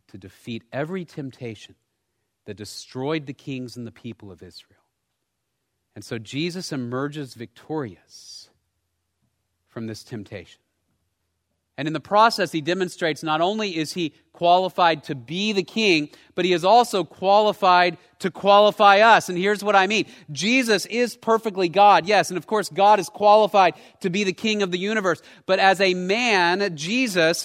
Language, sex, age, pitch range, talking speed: English, male, 30-49, 130-200 Hz, 155 wpm